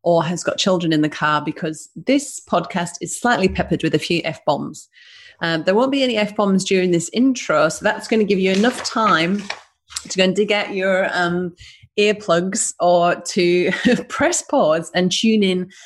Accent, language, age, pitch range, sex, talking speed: British, English, 30-49, 160-210 Hz, female, 180 wpm